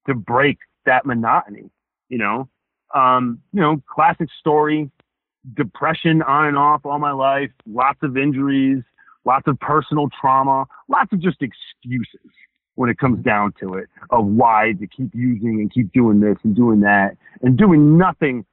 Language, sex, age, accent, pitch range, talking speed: English, male, 40-59, American, 125-165 Hz, 160 wpm